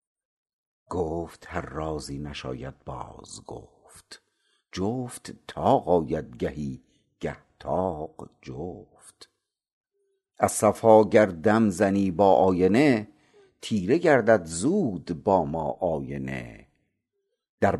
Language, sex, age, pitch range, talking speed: Persian, male, 60-79, 80-120 Hz, 80 wpm